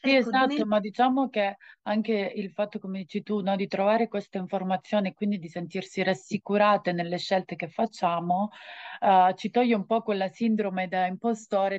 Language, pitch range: Italian, 185-215 Hz